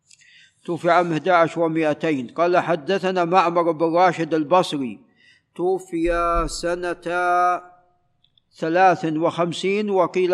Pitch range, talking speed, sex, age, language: 170-195 Hz, 80 wpm, male, 50-69, Arabic